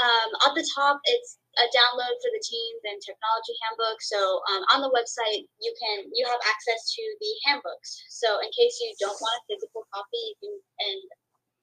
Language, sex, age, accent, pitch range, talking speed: English, female, 10-29, American, 210-345 Hz, 185 wpm